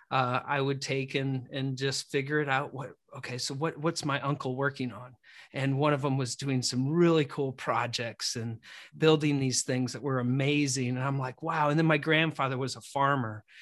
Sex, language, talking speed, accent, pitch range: male, English, 210 wpm, American, 125-155 Hz